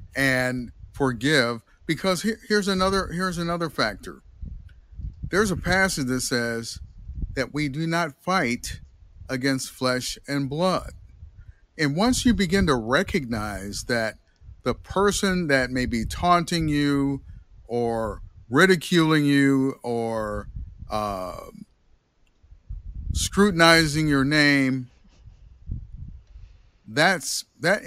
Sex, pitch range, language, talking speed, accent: male, 95-150 Hz, English, 100 wpm, American